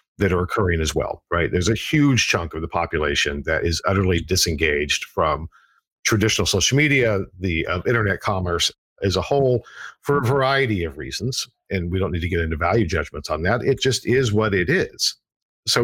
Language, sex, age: English, male, 50-69